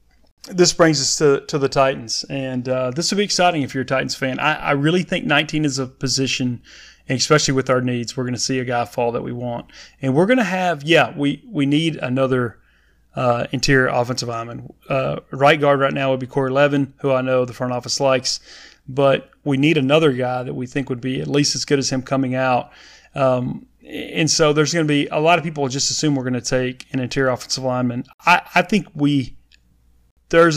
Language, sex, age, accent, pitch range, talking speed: English, male, 30-49, American, 125-150 Hz, 225 wpm